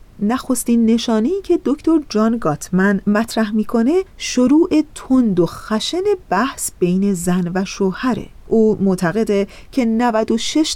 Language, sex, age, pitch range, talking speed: Persian, female, 40-59, 185-255 Hz, 115 wpm